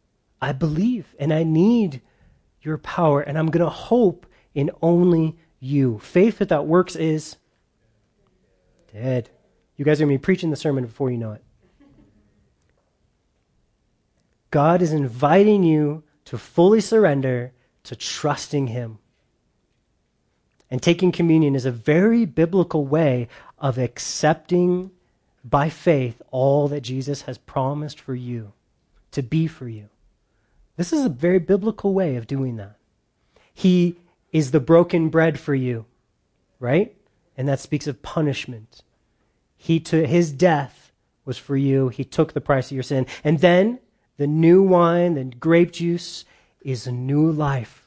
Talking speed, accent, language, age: 145 wpm, American, English, 30-49